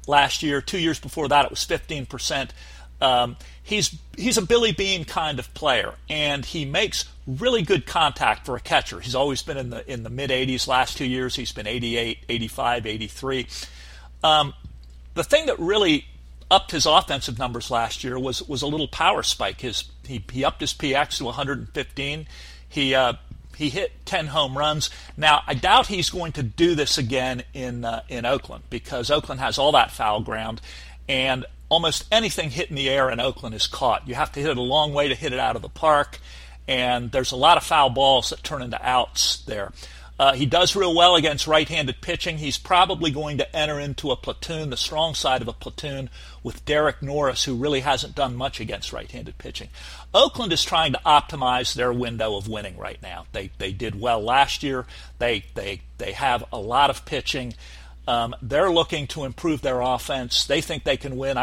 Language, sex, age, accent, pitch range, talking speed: English, male, 40-59, American, 115-150 Hz, 200 wpm